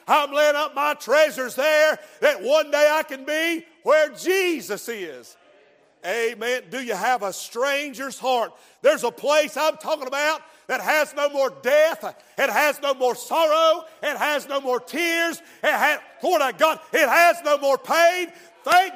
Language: English